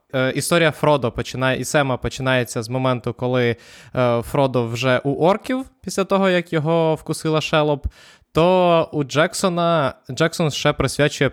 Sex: male